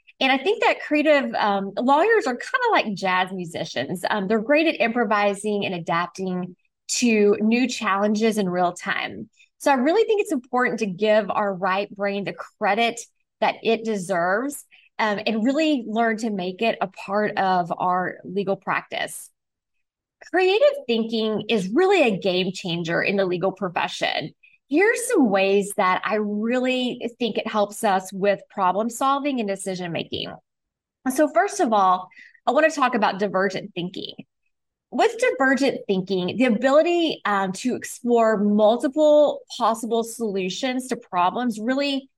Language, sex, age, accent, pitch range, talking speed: English, female, 20-39, American, 195-265 Hz, 150 wpm